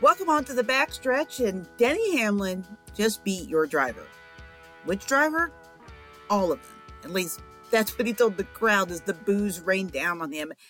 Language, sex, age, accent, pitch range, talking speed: English, female, 50-69, American, 160-205 Hz, 180 wpm